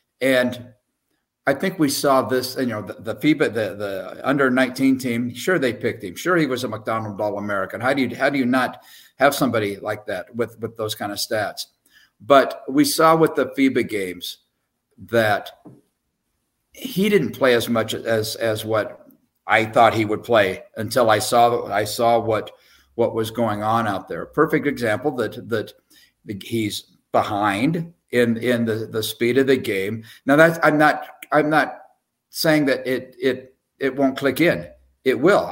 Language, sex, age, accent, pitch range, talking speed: English, male, 50-69, American, 115-140 Hz, 175 wpm